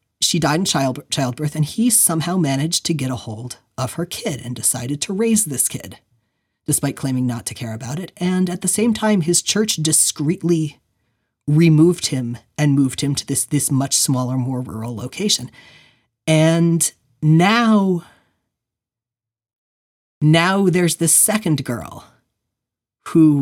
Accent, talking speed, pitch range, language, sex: American, 145 wpm, 120-155 Hz, English, male